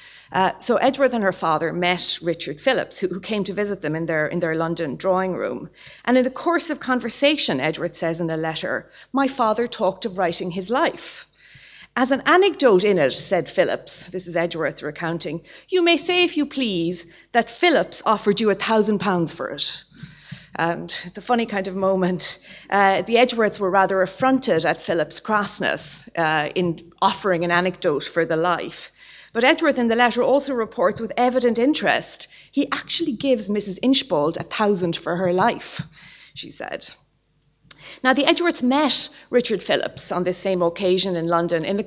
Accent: Irish